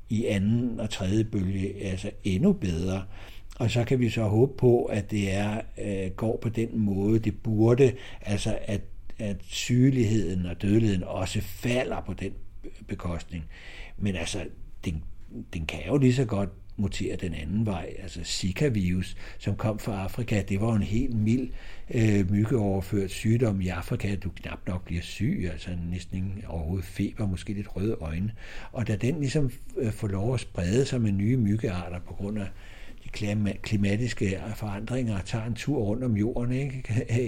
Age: 60-79